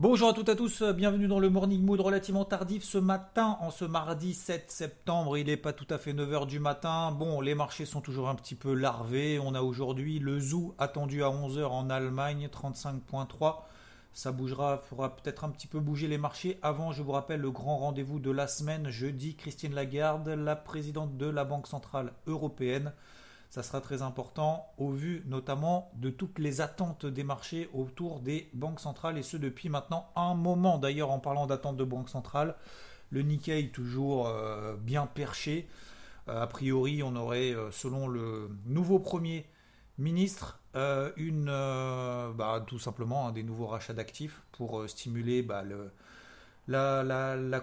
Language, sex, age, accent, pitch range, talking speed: French, male, 40-59, French, 130-160 Hz, 175 wpm